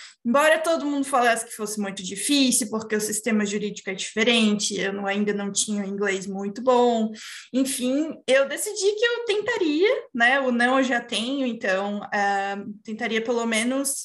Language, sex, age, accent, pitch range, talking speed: English, female, 20-39, Brazilian, 225-275 Hz, 160 wpm